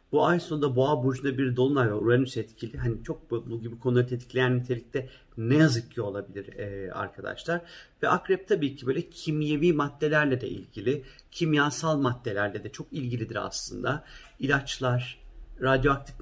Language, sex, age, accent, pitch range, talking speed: Turkish, male, 50-69, native, 115-140 Hz, 150 wpm